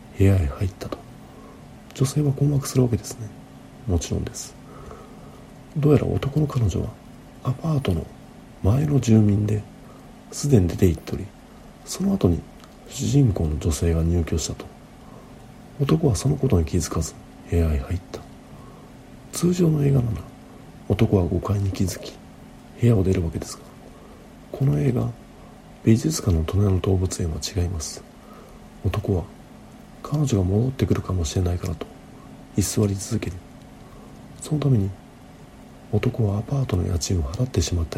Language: Japanese